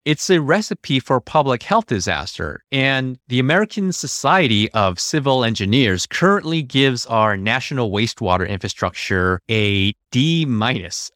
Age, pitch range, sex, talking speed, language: 30-49, 100-140 Hz, male, 125 wpm, English